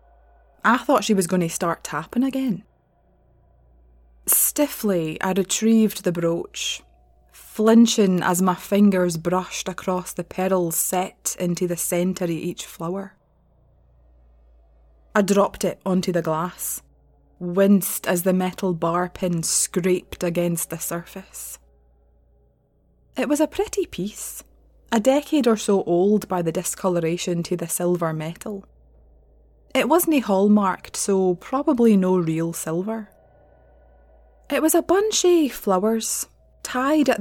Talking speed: 125 wpm